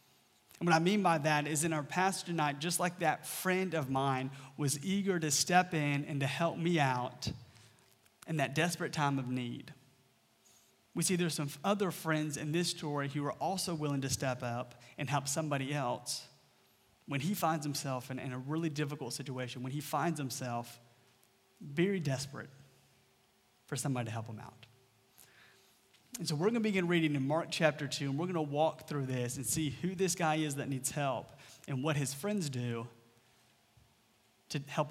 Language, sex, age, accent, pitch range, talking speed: English, male, 30-49, American, 130-165 Hz, 185 wpm